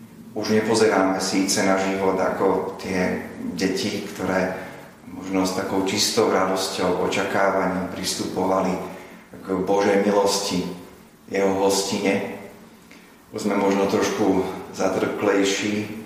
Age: 30-49